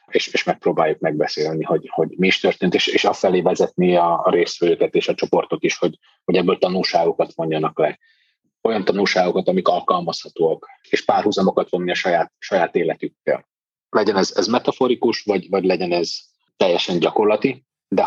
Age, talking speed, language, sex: 30-49, 155 wpm, Hungarian, male